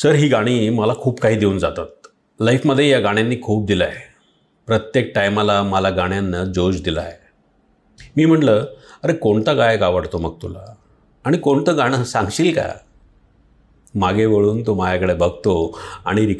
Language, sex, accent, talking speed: English, male, Indian, 115 wpm